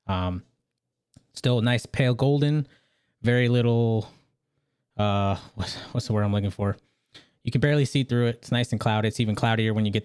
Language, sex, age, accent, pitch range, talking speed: English, male, 20-39, American, 105-125 Hz, 190 wpm